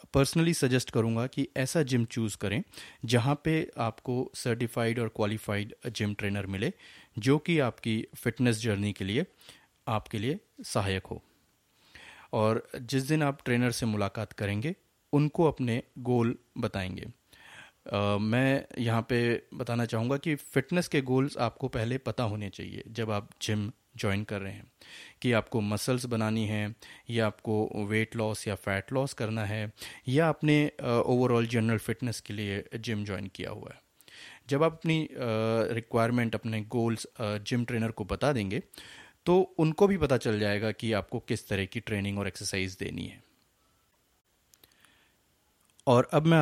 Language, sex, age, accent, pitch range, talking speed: Hindi, male, 30-49, native, 110-130 Hz, 155 wpm